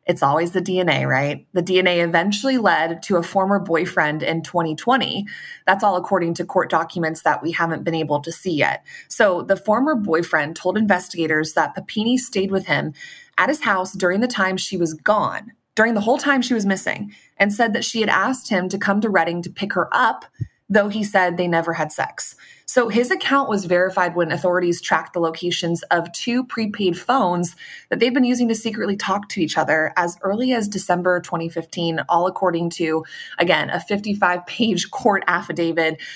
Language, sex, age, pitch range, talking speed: English, female, 20-39, 170-210 Hz, 190 wpm